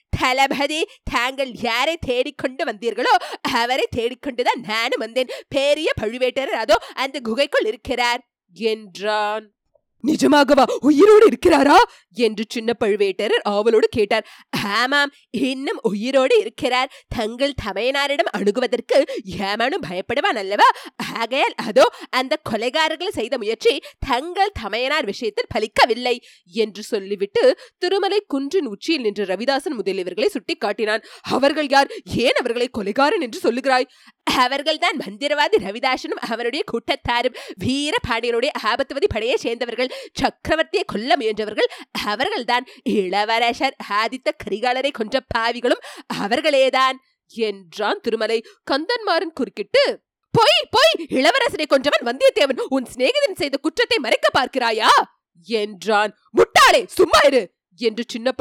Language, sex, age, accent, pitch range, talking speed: Tamil, female, 20-39, native, 230-320 Hz, 85 wpm